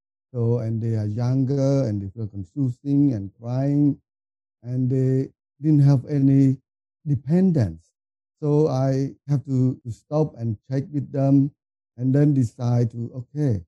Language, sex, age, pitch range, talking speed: English, male, 50-69, 105-135 Hz, 140 wpm